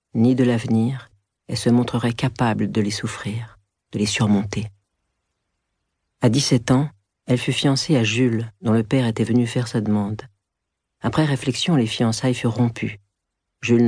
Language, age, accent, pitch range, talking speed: French, 40-59, French, 100-125 Hz, 155 wpm